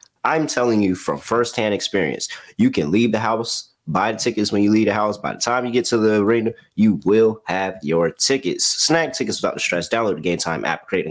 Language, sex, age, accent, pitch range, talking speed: English, male, 30-49, American, 95-125 Hz, 230 wpm